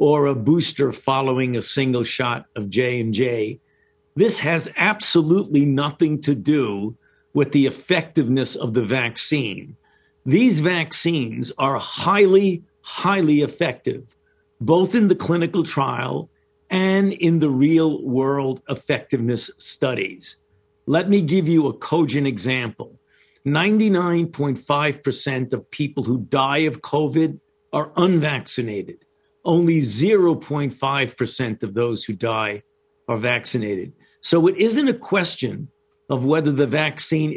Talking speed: 115 wpm